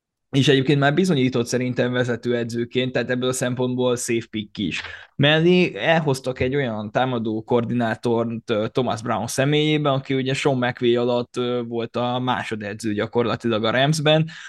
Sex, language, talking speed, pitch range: male, Hungarian, 145 wpm, 115-130 Hz